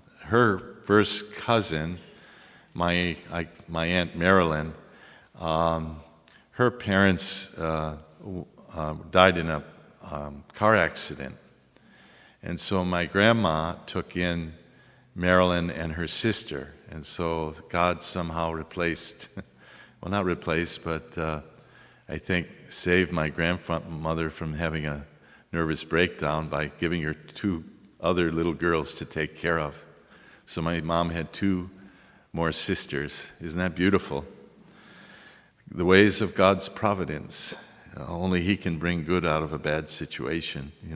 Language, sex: English, male